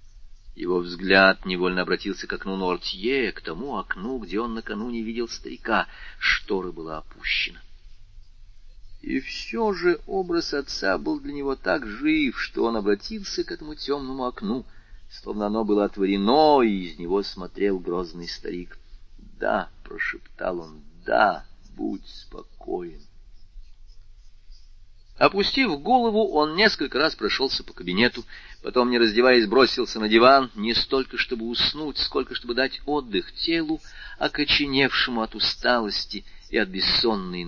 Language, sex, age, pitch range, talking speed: Russian, male, 40-59, 95-150 Hz, 130 wpm